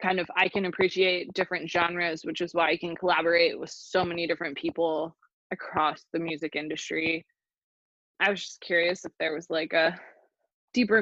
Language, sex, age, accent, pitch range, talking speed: English, female, 20-39, American, 165-195 Hz, 175 wpm